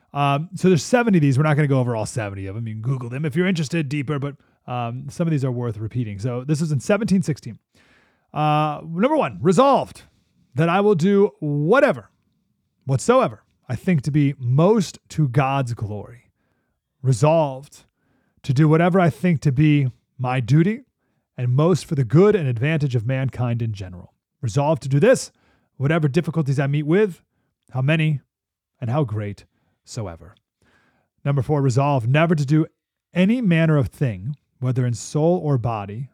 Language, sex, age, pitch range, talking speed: English, male, 30-49, 120-165 Hz, 175 wpm